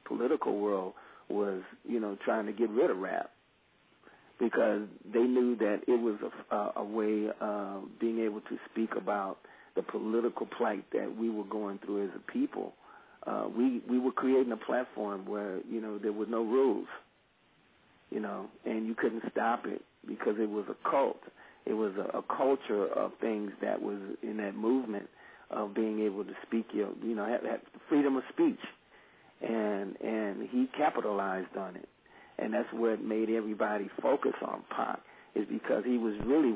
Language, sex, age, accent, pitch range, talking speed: English, male, 40-59, American, 105-125 Hz, 175 wpm